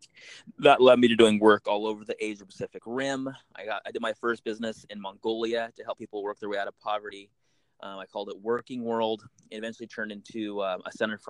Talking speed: 235 wpm